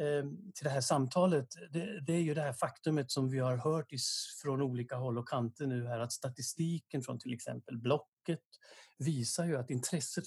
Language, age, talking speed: Swedish, 60-79, 185 wpm